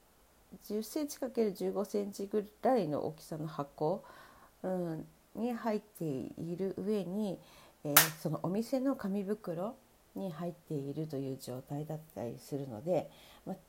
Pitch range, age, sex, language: 145-200 Hz, 40-59, female, Japanese